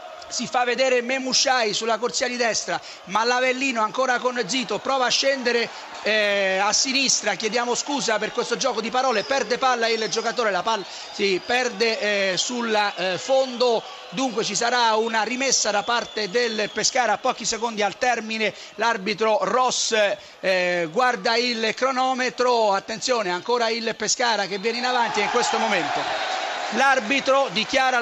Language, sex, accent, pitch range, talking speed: Italian, male, native, 215-260 Hz, 150 wpm